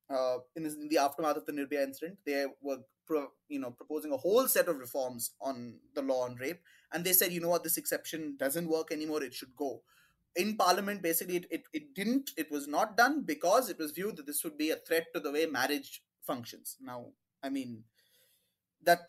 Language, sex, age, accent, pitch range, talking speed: English, male, 20-39, Indian, 145-185 Hz, 220 wpm